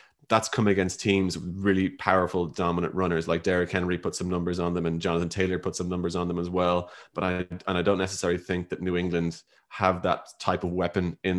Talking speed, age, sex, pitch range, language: 225 wpm, 20-39, male, 85-100 Hz, English